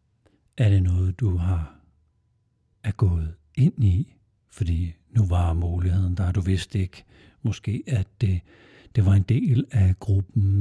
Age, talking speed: 60-79, 145 wpm